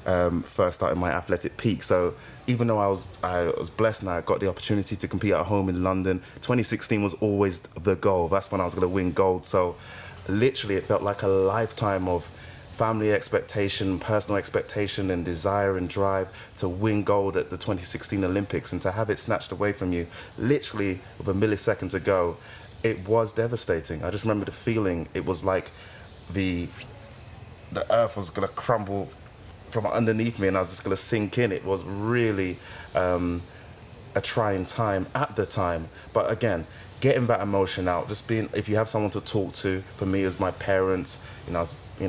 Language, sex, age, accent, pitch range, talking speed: English, male, 20-39, British, 95-110 Hz, 190 wpm